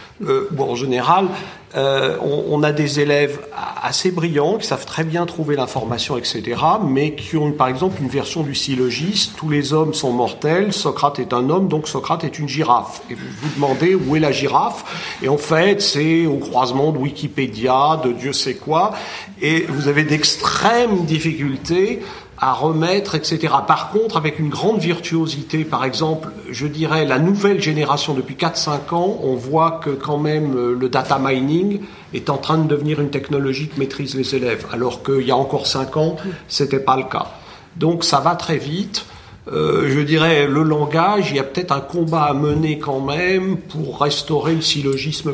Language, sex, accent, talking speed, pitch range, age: French, male, French, 185 wpm, 140-170 Hz, 50-69